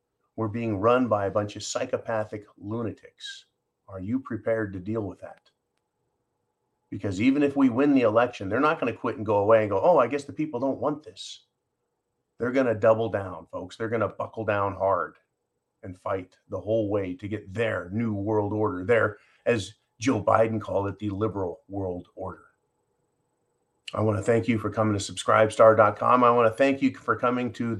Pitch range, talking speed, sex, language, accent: 100-115 Hz, 200 wpm, male, English, American